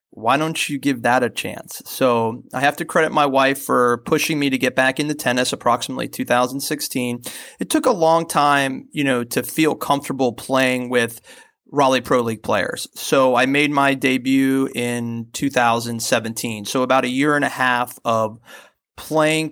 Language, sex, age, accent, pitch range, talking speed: English, male, 30-49, American, 125-155 Hz, 170 wpm